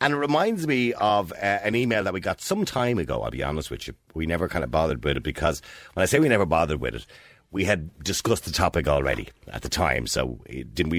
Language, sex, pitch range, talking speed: English, male, 75-110 Hz, 250 wpm